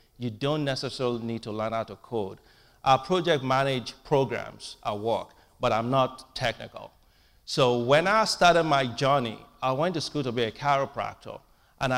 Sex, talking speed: male, 170 wpm